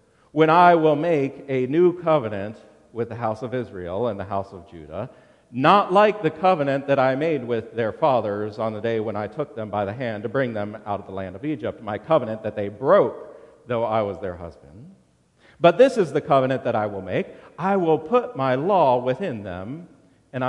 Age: 50-69